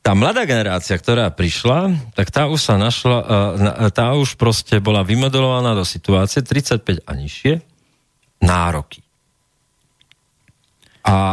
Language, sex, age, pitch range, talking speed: Slovak, male, 40-59, 95-125 Hz, 115 wpm